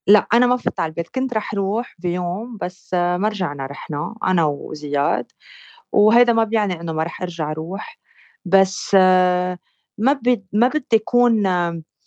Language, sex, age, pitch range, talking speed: Arabic, female, 30-49, 175-230 Hz, 140 wpm